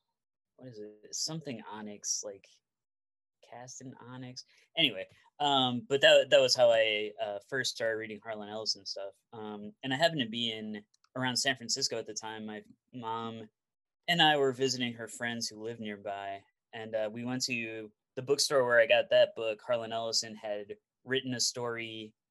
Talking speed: 180 wpm